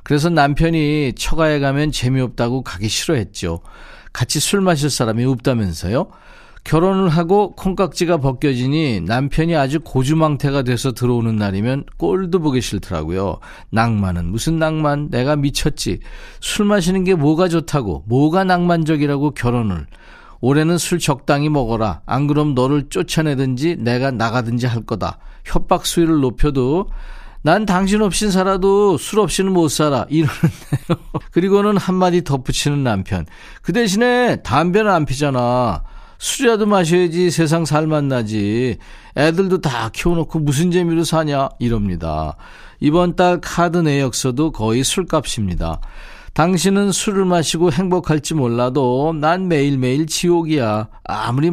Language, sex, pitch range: Korean, male, 125-170 Hz